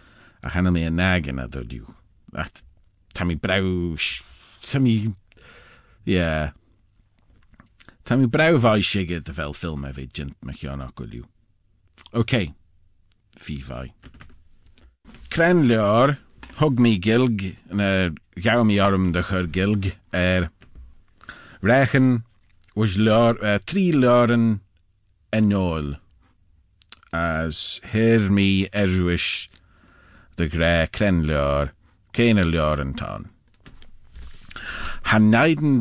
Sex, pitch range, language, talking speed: male, 85-105 Hz, English, 100 wpm